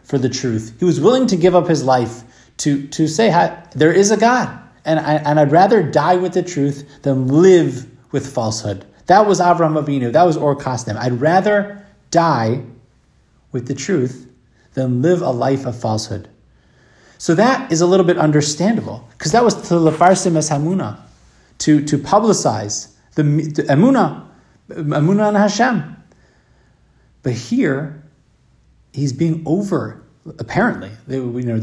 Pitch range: 130-200 Hz